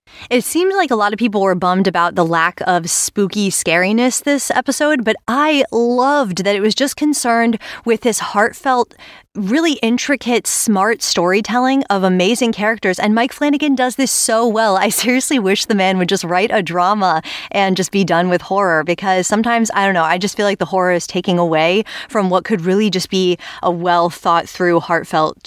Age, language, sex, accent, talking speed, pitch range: 20-39, English, female, American, 195 wpm, 175-225 Hz